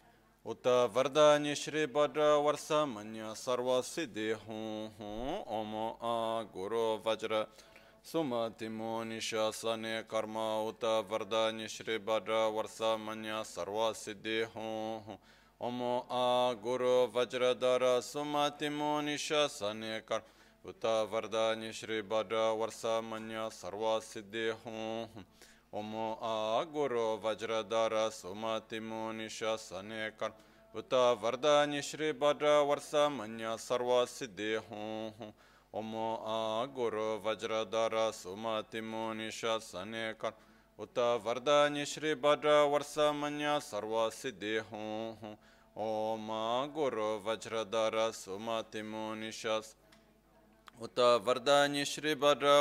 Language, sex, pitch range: Italian, male, 110-125 Hz